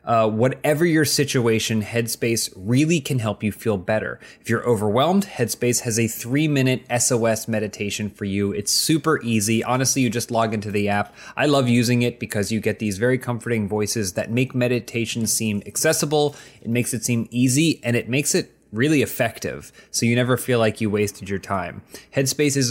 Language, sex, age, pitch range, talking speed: English, male, 20-39, 105-125 Hz, 180 wpm